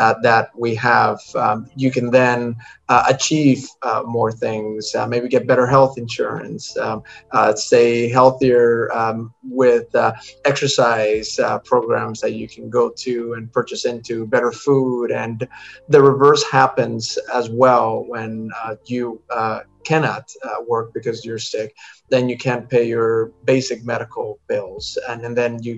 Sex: male